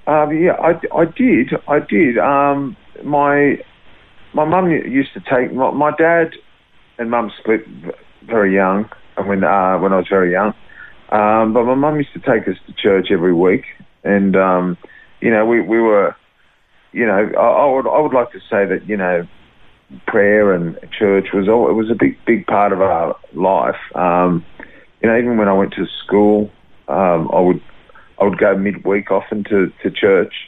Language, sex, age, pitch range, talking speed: English, male, 40-59, 95-120 Hz, 185 wpm